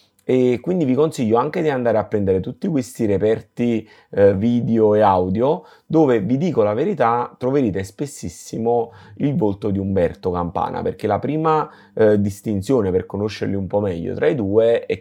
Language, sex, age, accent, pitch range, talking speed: Italian, male, 30-49, native, 100-125 Hz, 170 wpm